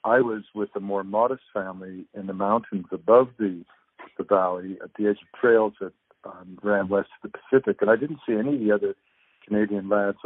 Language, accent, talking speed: English, American, 210 wpm